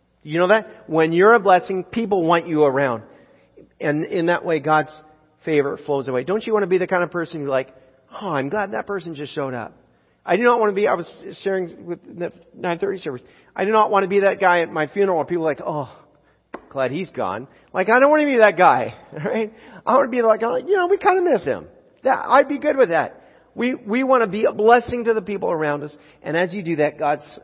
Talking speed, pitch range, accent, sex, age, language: 255 wpm, 125-185 Hz, American, male, 40-59, English